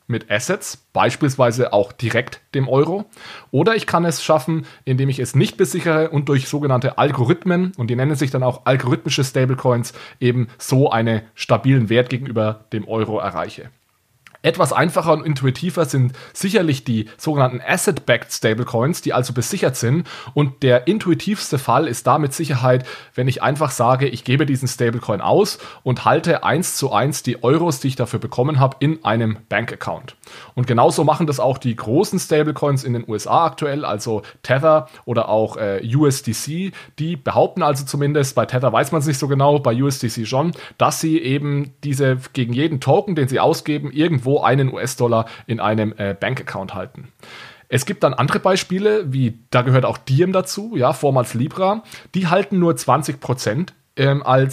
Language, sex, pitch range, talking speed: German, male, 125-155 Hz, 170 wpm